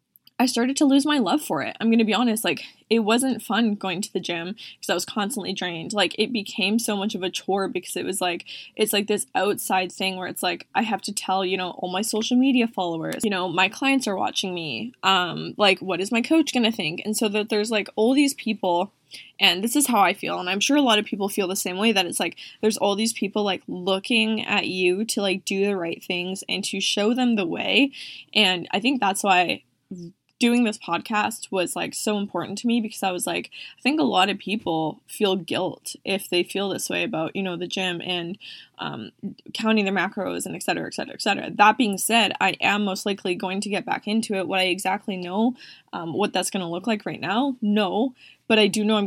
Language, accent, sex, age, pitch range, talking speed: English, American, female, 10-29, 190-225 Hz, 245 wpm